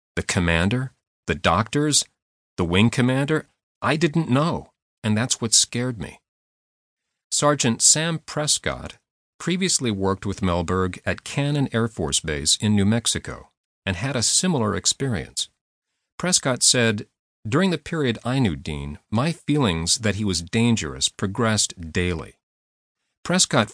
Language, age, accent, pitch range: English, 40-59, American, 90-135 Hz